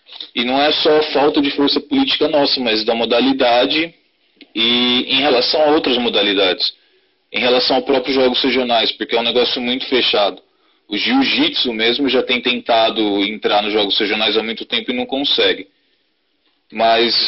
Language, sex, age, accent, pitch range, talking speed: Portuguese, male, 20-39, Brazilian, 120-165 Hz, 165 wpm